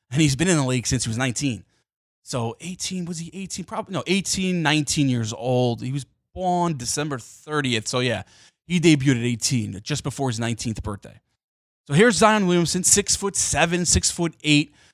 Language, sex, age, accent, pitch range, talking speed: English, male, 20-39, American, 120-175 Hz, 190 wpm